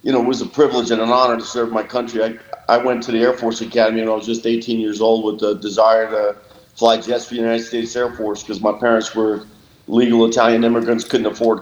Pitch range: 110-125 Hz